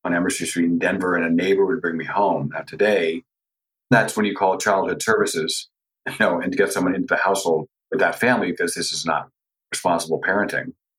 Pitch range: 95-125 Hz